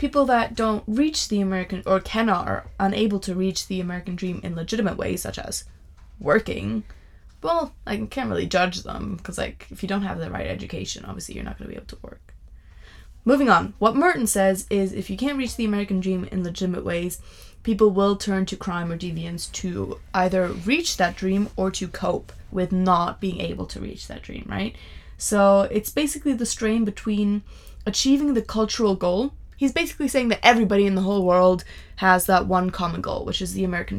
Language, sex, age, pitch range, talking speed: English, female, 20-39, 175-210 Hz, 200 wpm